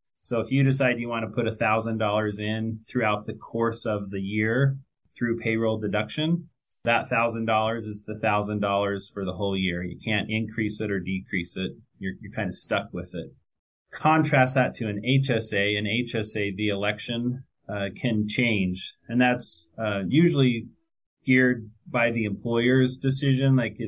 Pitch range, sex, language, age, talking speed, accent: 100-120 Hz, male, English, 30-49, 160 wpm, American